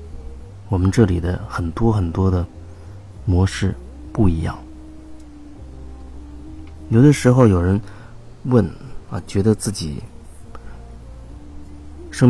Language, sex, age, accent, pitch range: Chinese, male, 30-49, native, 85-115 Hz